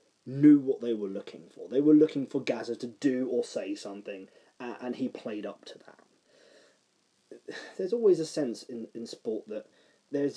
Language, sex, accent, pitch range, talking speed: English, male, British, 100-155 Hz, 185 wpm